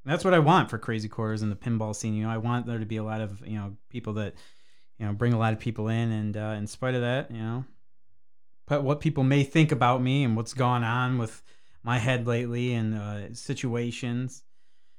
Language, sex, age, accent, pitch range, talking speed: English, male, 30-49, American, 110-140 Hz, 240 wpm